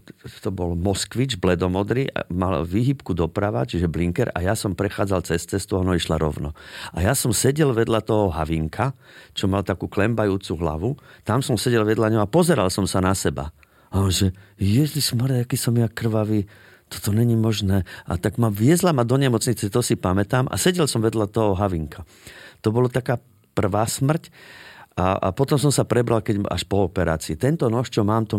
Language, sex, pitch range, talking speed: Slovak, male, 90-120 Hz, 180 wpm